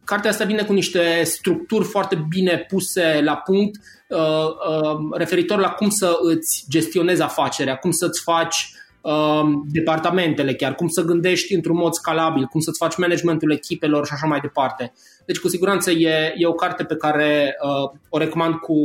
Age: 20-39